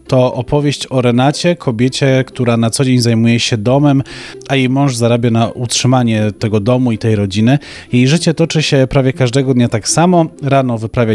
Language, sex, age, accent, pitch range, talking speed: Polish, male, 30-49, native, 115-135 Hz, 185 wpm